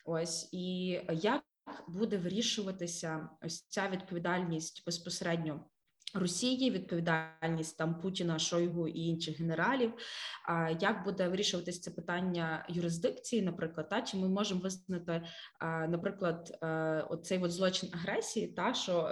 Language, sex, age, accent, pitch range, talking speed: Ukrainian, female, 20-39, native, 165-195 Hz, 115 wpm